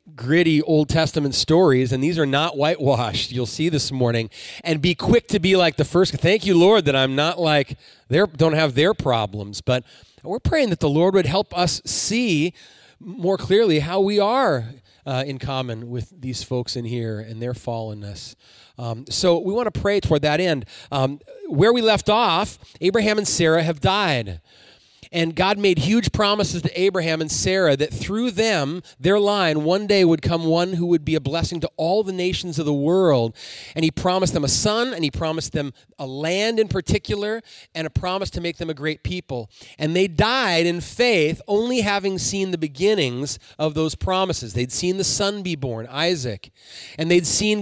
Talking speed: 195 wpm